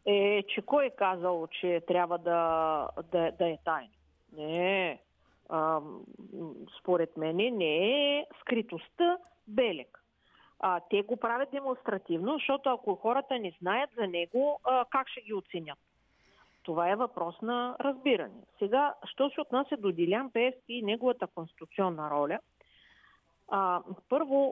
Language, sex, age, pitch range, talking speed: Bulgarian, female, 40-59, 175-250 Hz, 135 wpm